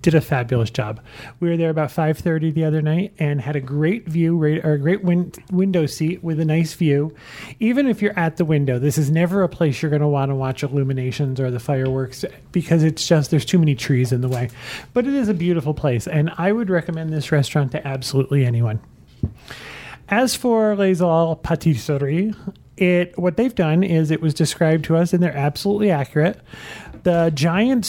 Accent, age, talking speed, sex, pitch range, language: American, 30-49, 200 wpm, male, 145-180 Hz, English